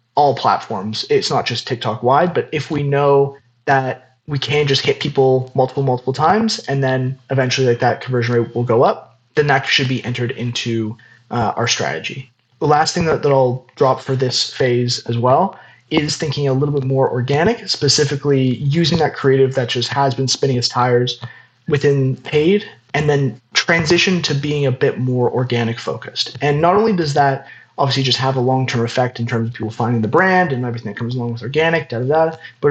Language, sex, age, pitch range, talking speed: English, male, 20-39, 125-150 Hz, 200 wpm